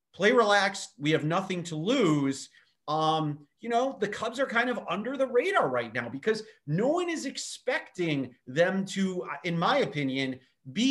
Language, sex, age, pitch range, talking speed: English, male, 30-49, 140-205 Hz, 170 wpm